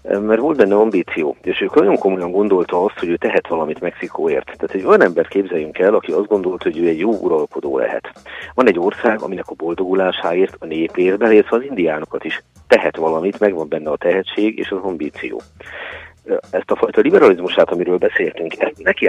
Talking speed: 180 wpm